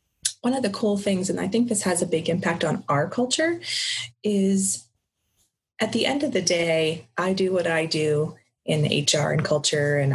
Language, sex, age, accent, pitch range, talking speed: English, female, 30-49, American, 145-195 Hz, 195 wpm